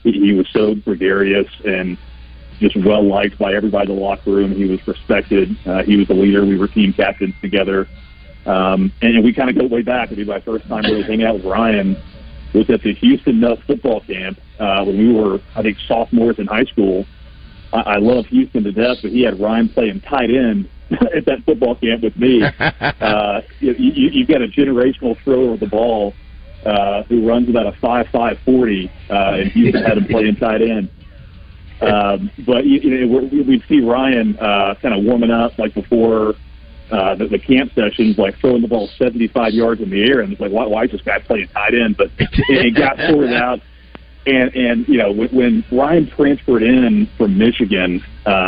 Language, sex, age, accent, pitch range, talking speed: English, male, 40-59, American, 100-125 Hz, 200 wpm